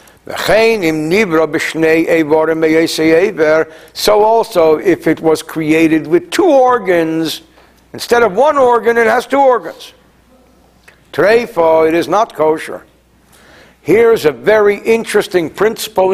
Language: English